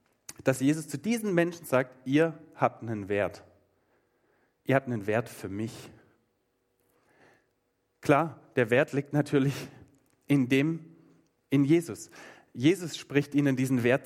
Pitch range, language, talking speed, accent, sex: 120-150 Hz, German, 130 wpm, German, male